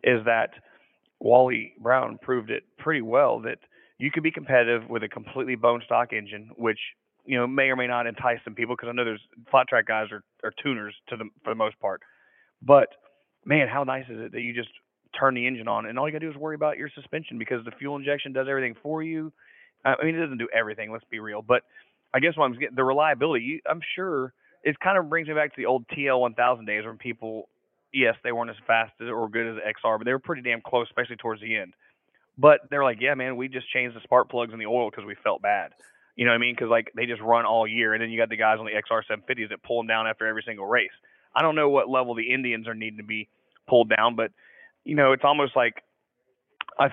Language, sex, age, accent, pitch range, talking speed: English, male, 30-49, American, 115-140 Hz, 255 wpm